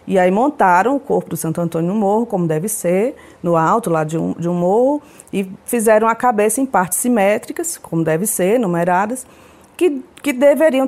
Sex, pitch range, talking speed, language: female, 180-260 Hz, 190 wpm, Portuguese